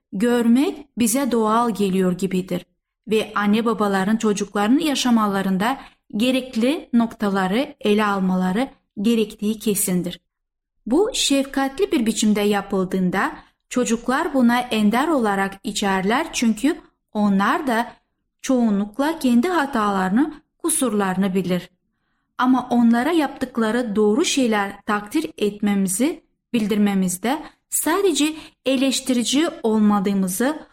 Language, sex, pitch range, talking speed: Turkish, female, 205-275 Hz, 90 wpm